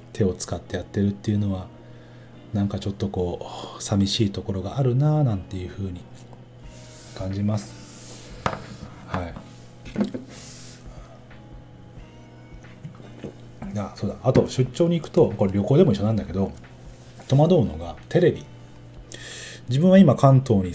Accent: native